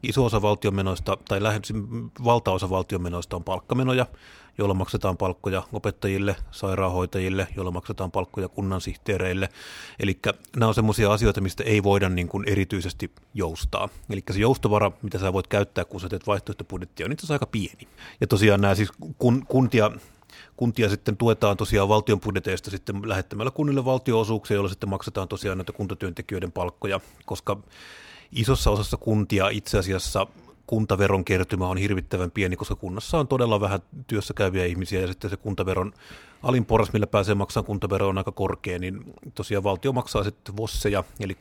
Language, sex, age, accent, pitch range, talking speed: Finnish, male, 30-49, native, 95-110 Hz, 150 wpm